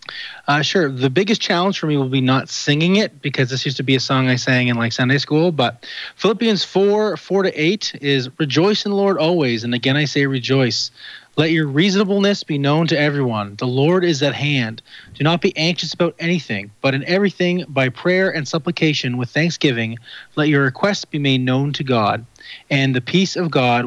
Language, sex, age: English, male, 30-49